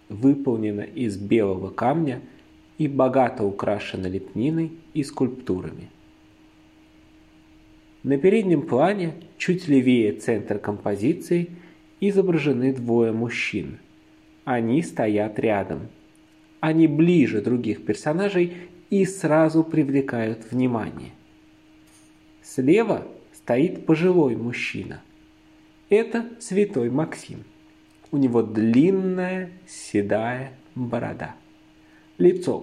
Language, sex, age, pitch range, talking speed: Russian, male, 40-59, 105-165 Hz, 80 wpm